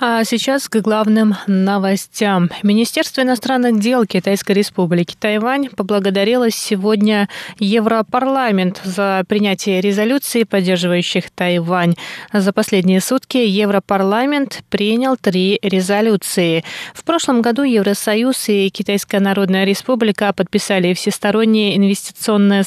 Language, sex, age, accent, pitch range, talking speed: Russian, female, 20-39, native, 195-235 Hz, 100 wpm